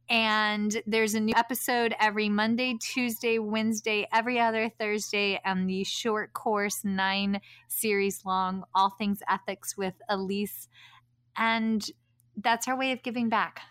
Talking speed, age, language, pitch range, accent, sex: 135 wpm, 20-39, English, 195-240 Hz, American, female